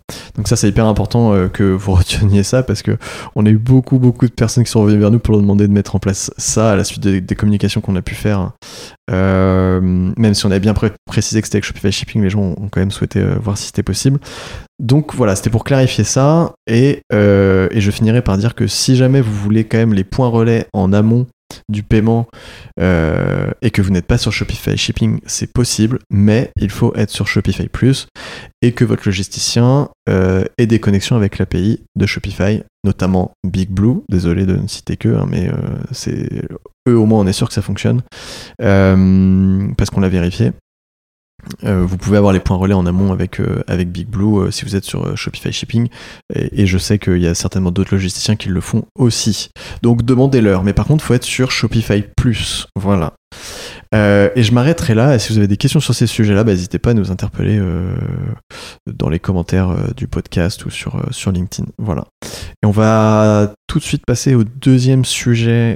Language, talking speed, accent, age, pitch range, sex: French, 215 wpm, French, 20-39, 95-120 Hz, male